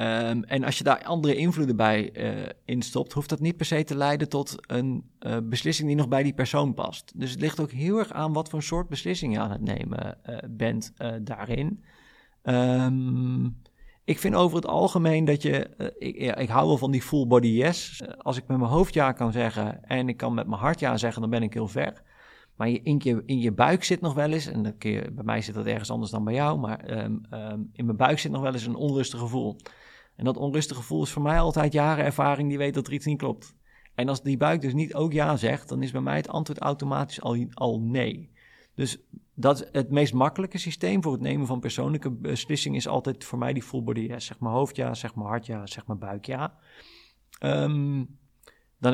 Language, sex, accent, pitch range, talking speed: Dutch, male, Dutch, 115-145 Hz, 230 wpm